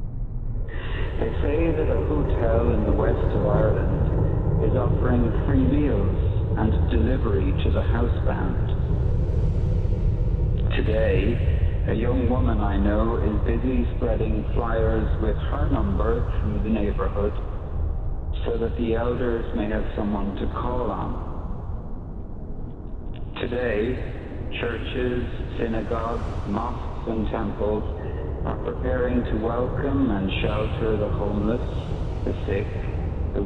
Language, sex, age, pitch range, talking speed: English, male, 50-69, 85-110 Hz, 115 wpm